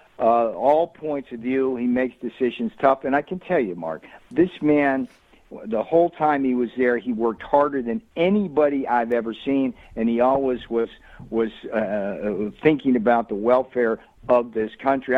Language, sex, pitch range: English, male, 115-140 Hz